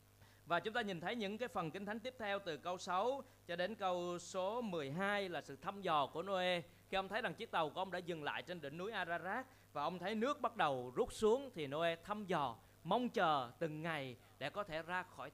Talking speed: 245 wpm